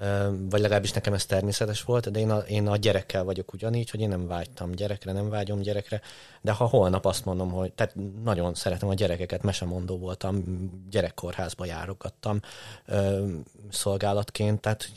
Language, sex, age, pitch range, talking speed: Hungarian, male, 30-49, 95-110 Hz, 150 wpm